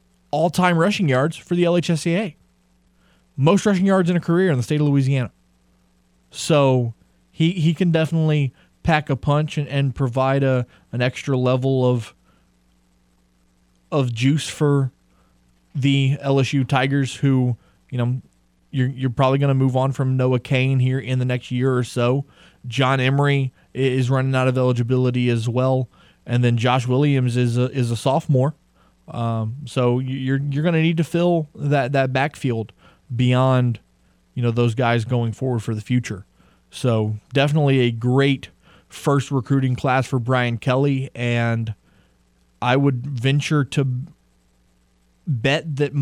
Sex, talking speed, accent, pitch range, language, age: male, 150 wpm, American, 115-140 Hz, English, 20-39